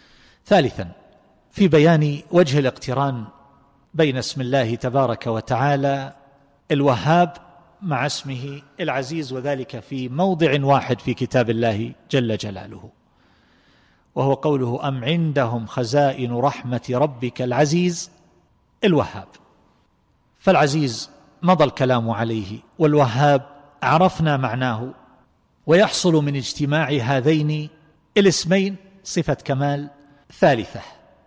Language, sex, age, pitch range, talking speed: Arabic, male, 50-69, 130-165 Hz, 90 wpm